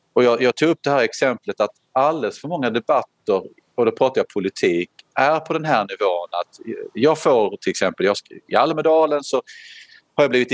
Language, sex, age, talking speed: Swedish, male, 40-59, 205 wpm